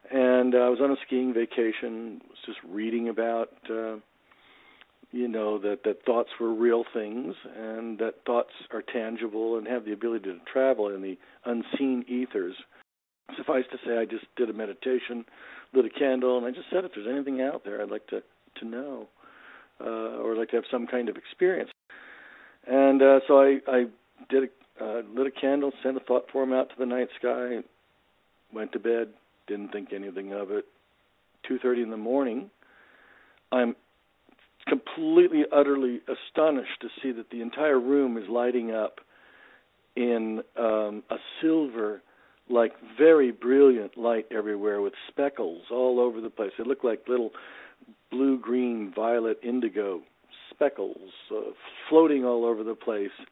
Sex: male